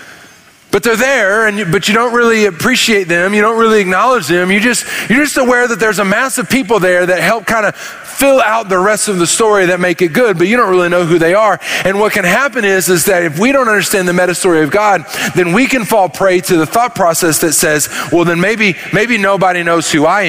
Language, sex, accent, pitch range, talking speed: English, male, American, 165-215 Hz, 255 wpm